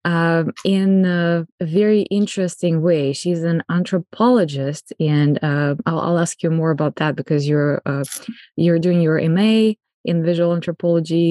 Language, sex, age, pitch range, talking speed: English, female, 20-39, 155-185 Hz, 150 wpm